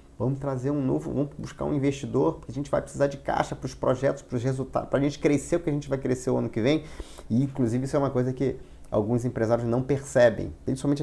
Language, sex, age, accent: Portuguese, male, 30-49, Brazilian